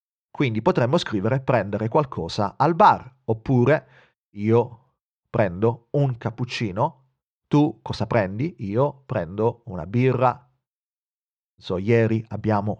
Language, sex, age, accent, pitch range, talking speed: Italian, male, 40-59, native, 110-140 Hz, 105 wpm